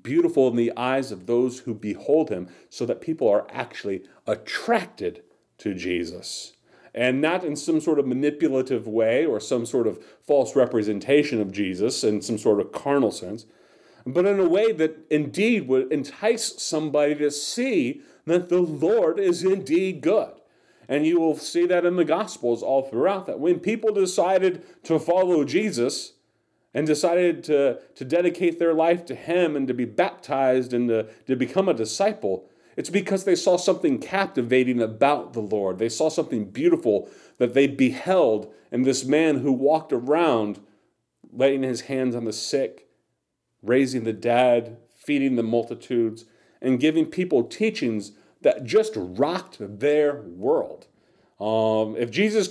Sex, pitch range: male, 120-180 Hz